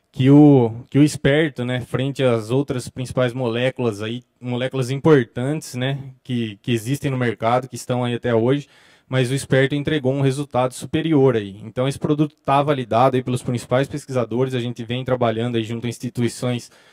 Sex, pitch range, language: male, 120-145 Hz, Portuguese